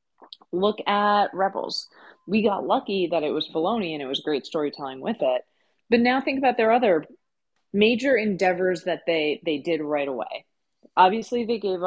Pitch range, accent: 175-255 Hz, American